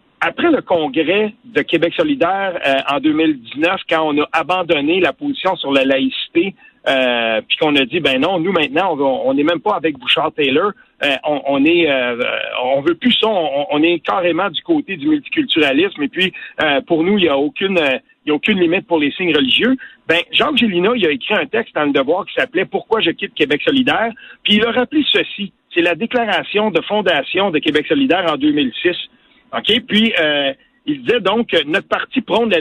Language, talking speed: French, 215 wpm